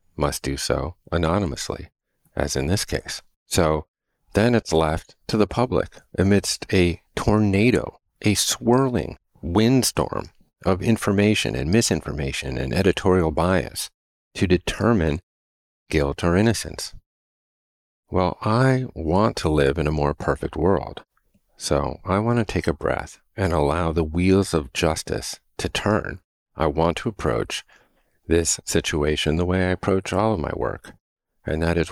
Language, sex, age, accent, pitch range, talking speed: English, male, 50-69, American, 75-100 Hz, 140 wpm